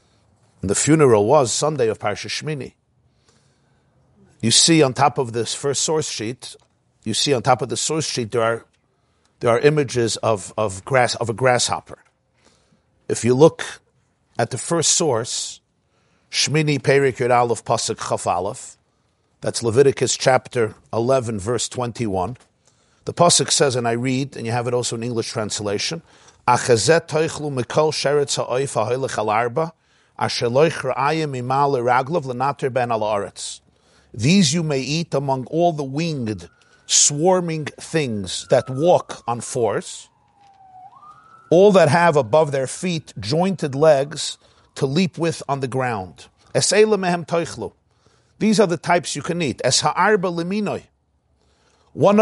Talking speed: 125 wpm